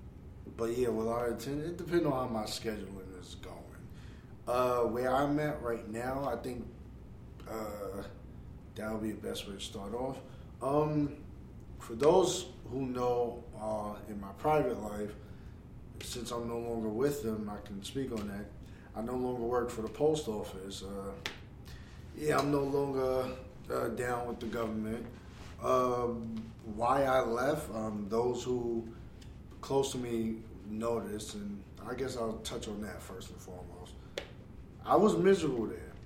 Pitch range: 105-130 Hz